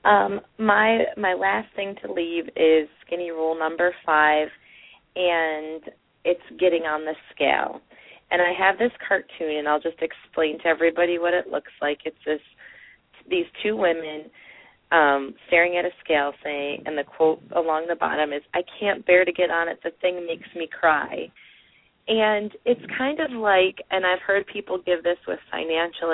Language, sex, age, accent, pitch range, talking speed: English, female, 30-49, American, 160-185 Hz, 175 wpm